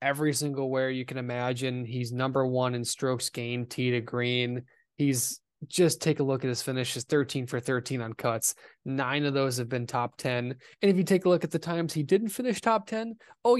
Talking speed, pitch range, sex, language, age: 220 wpm, 120-150 Hz, male, English, 20-39